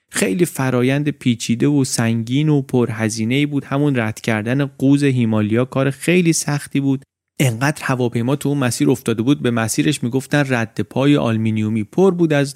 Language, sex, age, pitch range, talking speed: Persian, male, 30-49, 110-145 Hz, 160 wpm